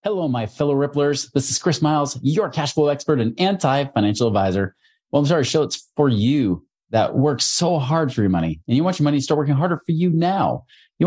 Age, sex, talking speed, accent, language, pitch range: 30-49, male, 230 wpm, American, English, 100-140 Hz